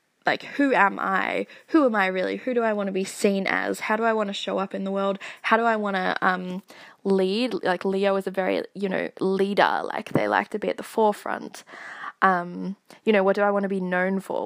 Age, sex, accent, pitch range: 10-29, female, Australian, 190-215 Hz